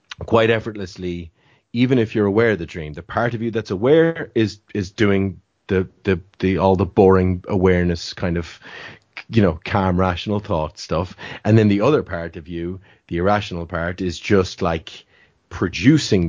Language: English